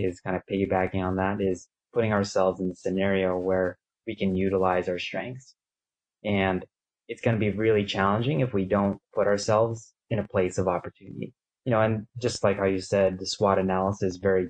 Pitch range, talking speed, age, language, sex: 95-110 Hz, 200 wpm, 20-39, English, male